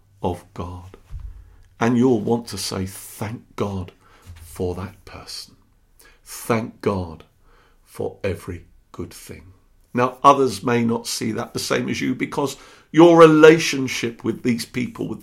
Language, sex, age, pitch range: English, male, 50-69, 95-130 Hz